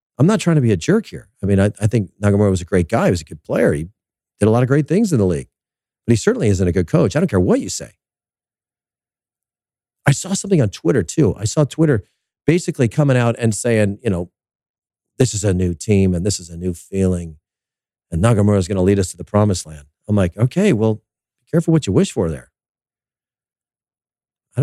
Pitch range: 95-125 Hz